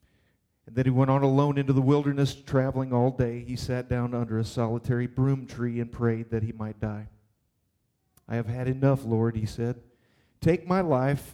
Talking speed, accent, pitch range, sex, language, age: 190 wpm, American, 115-135 Hz, male, English, 40-59